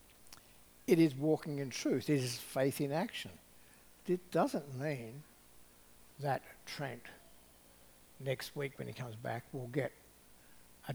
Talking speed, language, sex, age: 130 wpm, English, male, 60-79